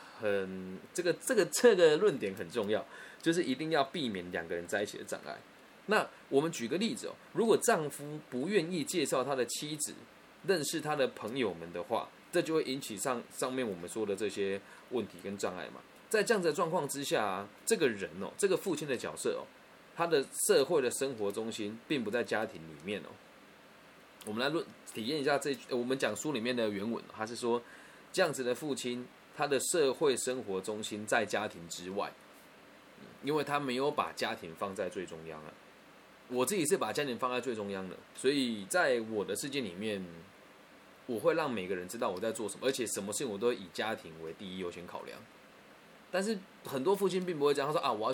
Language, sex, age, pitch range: Chinese, male, 20-39, 100-150 Hz